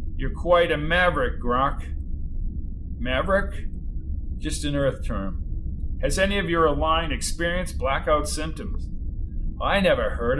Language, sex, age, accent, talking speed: English, male, 50-69, American, 120 wpm